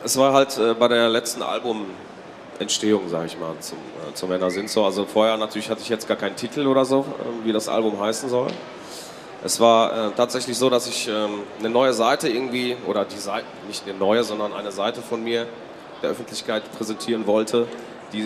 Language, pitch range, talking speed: German, 105-125 Hz, 200 wpm